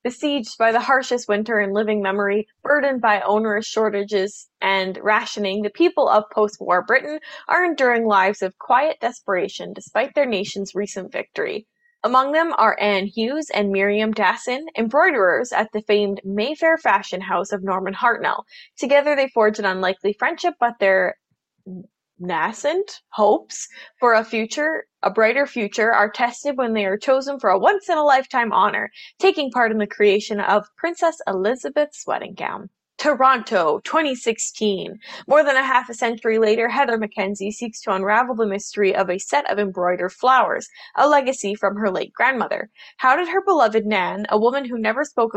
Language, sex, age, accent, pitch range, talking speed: English, female, 20-39, American, 200-265 Hz, 165 wpm